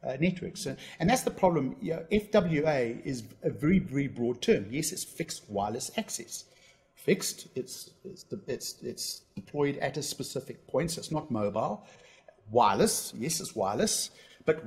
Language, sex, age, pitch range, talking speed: English, male, 50-69, 135-185 Hz, 170 wpm